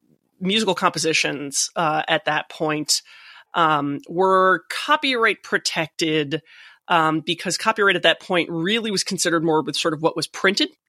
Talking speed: 145 wpm